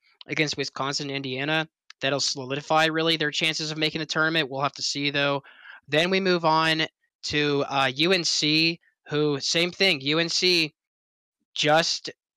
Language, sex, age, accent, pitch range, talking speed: English, male, 20-39, American, 145-170 Hz, 140 wpm